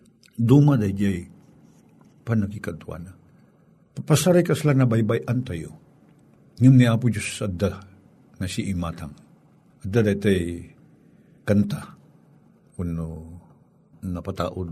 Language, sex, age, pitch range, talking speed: Filipino, male, 60-79, 100-145 Hz, 85 wpm